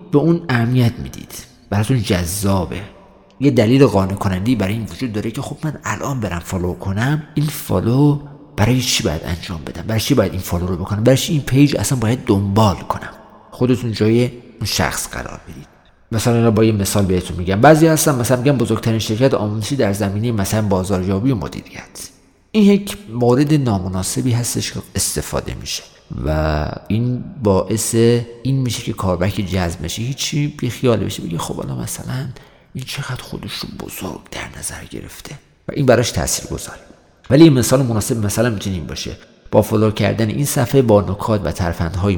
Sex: male